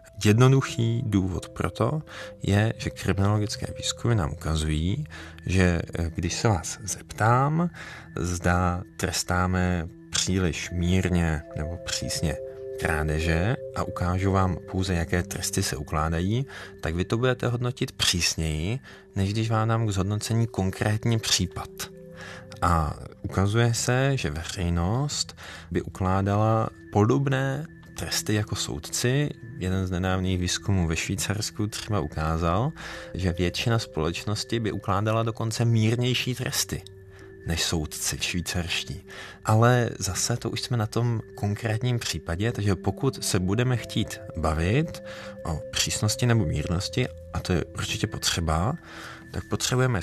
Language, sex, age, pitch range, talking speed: Czech, male, 40-59, 90-115 Hz, 120 wpm